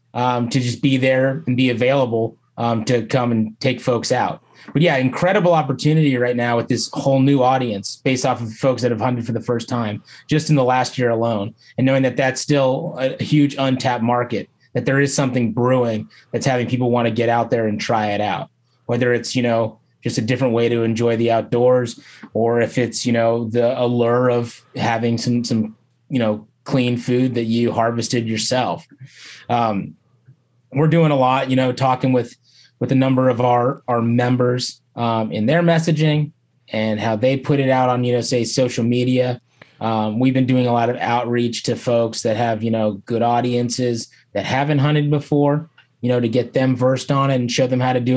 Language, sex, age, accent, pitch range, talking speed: English, male, 30-49, American, 120-130 Hz, 205 wpm